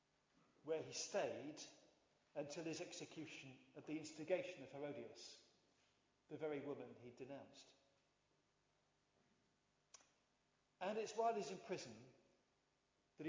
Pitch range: 155-225 Hz